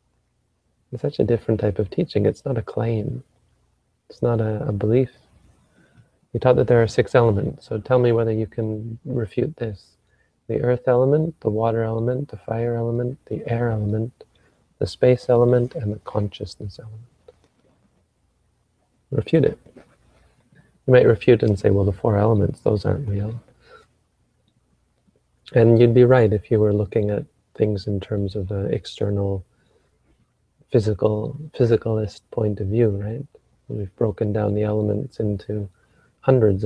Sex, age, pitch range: male, 30-49, 105-120 Hz